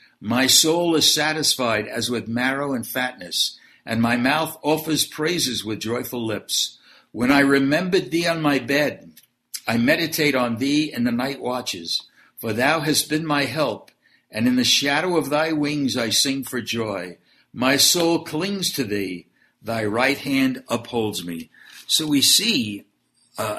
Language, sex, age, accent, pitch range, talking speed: English, male, 60-79, American, 120-160 Hz, 160 wpm